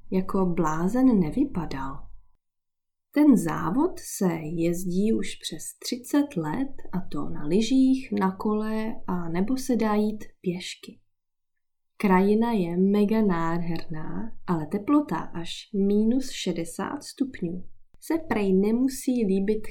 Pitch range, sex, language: 160-230 Hz, female, Czech